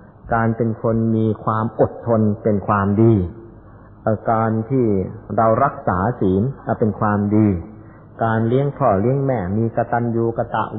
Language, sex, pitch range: Thai, male, 100-115 Hz